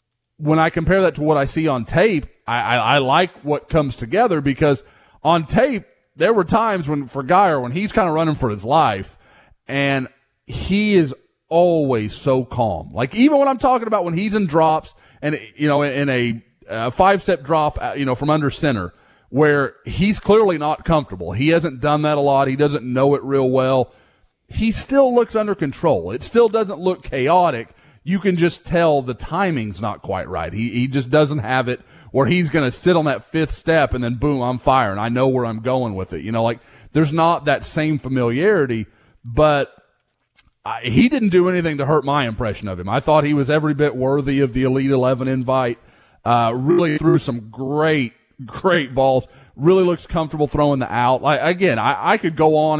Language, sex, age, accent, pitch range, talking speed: English, male, 30-49, American, 125-165 Hz, 205 wpm